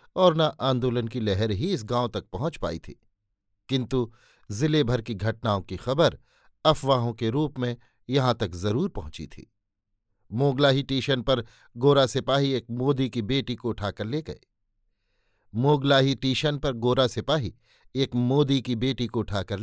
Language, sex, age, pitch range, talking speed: Hindi, male, 50-69, 105-140 Hz, 160 wpm